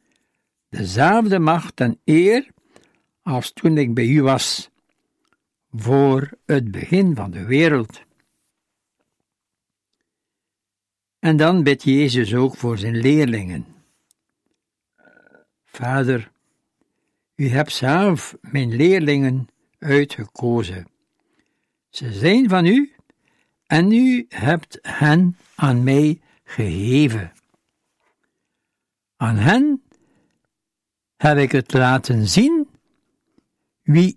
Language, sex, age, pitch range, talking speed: Dutch, male, 60-79, 125-190 Hz, 90 wpm